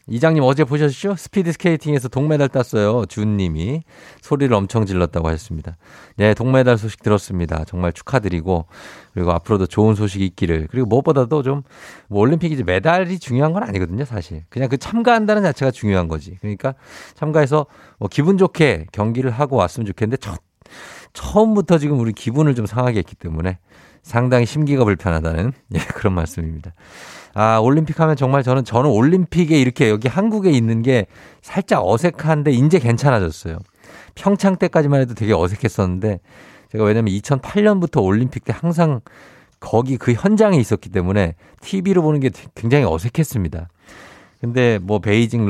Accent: native